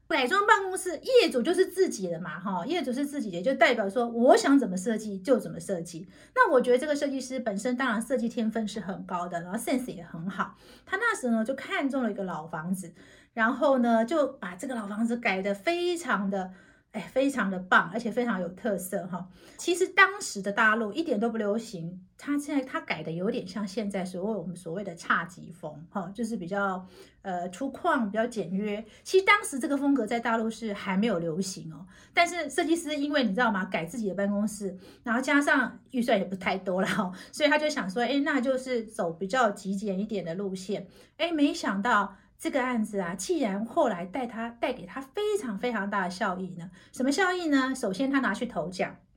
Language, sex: Chinese, female